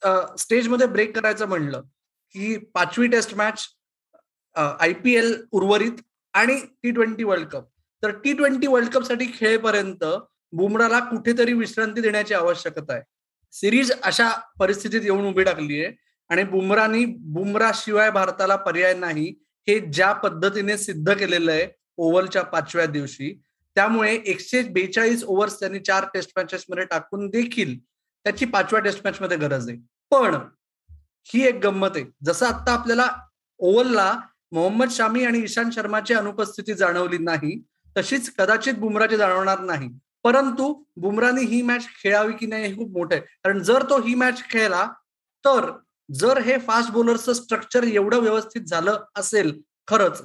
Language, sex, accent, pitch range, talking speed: Marathi, male, native, 190-230 Hz, 110 wpm